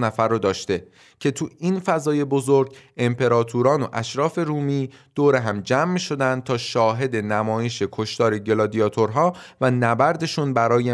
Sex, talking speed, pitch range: male, 130 wpm, 115-150 Hz